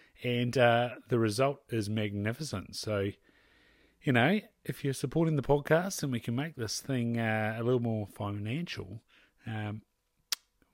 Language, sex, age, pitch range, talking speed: English, male, 30-49, 105-130 Hz, 150 wpm